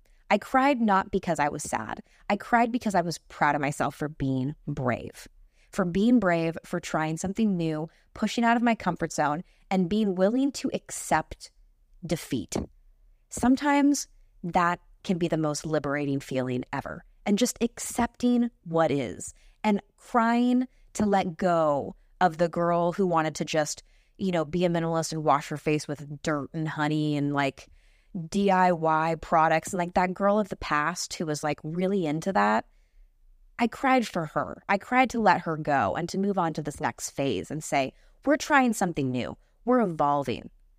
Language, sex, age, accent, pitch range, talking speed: English, female, 20-39, American, 150-205 Hz, 175 wpm